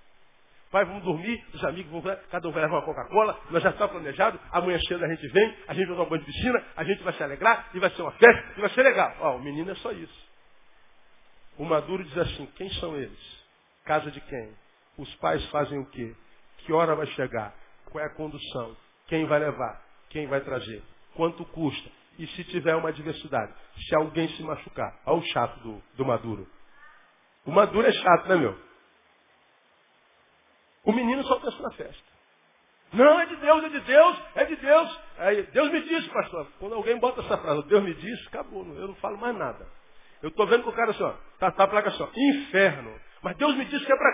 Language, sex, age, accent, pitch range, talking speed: Portuguese, male, 50-69, Brazilian, 150-235 Hz, 215 wpm